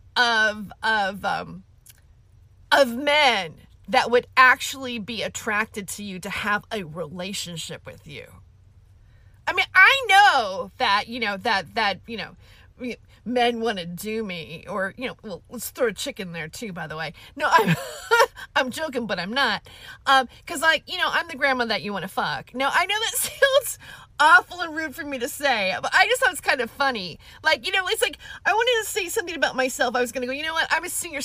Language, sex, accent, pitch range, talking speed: English, female, American, 195-315 Hz, 210 wpm